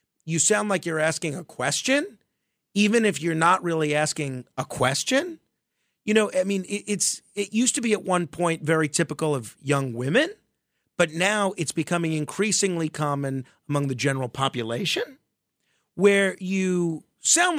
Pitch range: 145-210 Hz